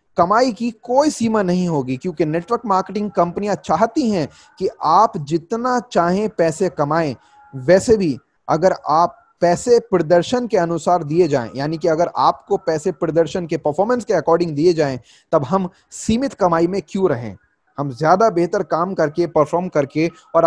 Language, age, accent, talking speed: Hindi, 20-39, native, 160 wpm